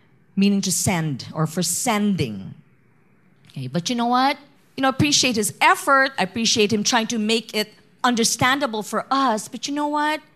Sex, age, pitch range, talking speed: female, 40-59, 175-250 Hz, 175 wpm